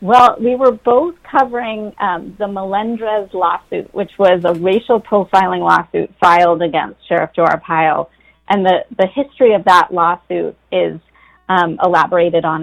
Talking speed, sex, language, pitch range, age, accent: 145 wpm, female, English, 175-200 Hz, 30-49, American